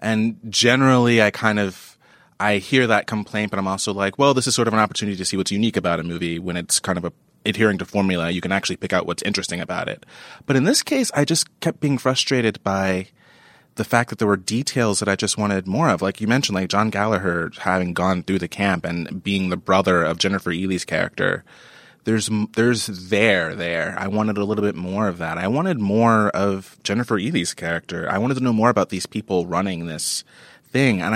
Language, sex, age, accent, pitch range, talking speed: English, male, 30-49, American, 95-120 Hz, 220 wpm